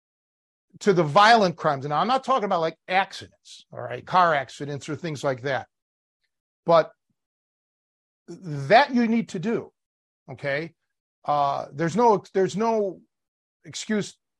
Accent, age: American, 50-69